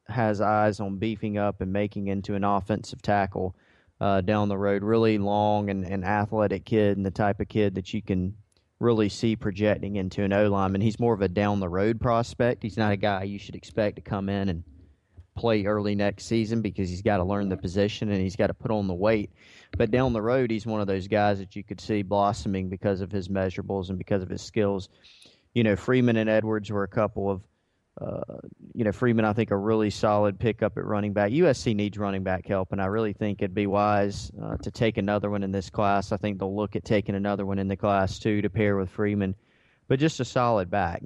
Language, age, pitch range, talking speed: English, 30-49, 100-110 Hz, 230 wpm